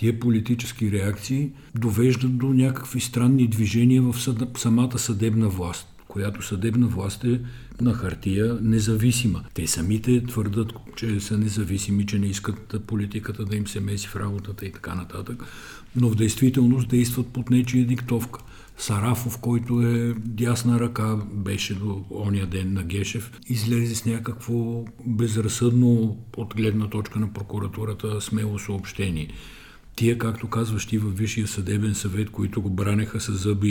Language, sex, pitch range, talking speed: Bulgarian, male, 100-120 Hz, 140 wpm